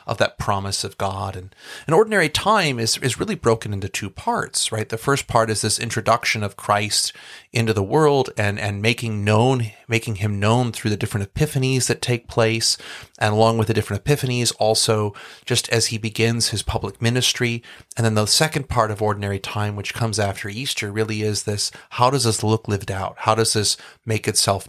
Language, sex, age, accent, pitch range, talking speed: English, male, 30-49, American, 105-120 Hz, 200 wpm